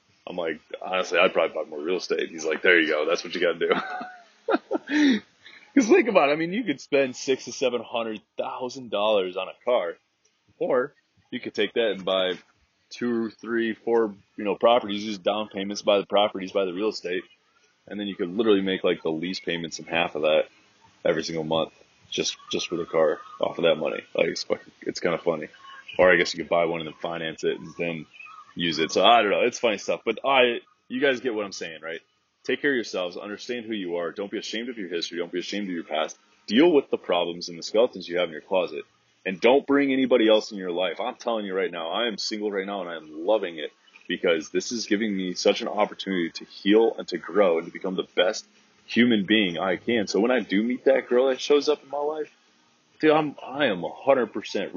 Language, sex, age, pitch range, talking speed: English, male, 20-39, 95-135 Hz, 240 wpm